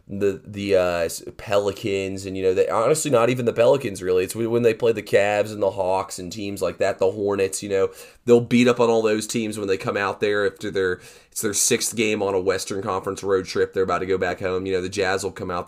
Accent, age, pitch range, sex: American, 30-49, 90-115 Hz, male